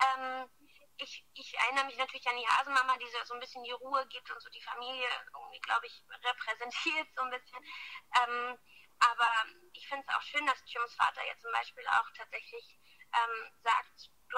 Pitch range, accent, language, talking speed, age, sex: 215-270 Hz, German, German, 175 wpm, 20-39, female